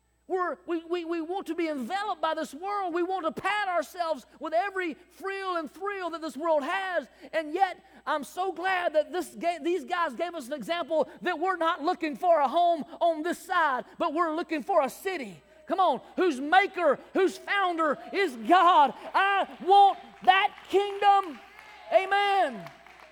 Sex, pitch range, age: male, 275-345 Hz, 40-59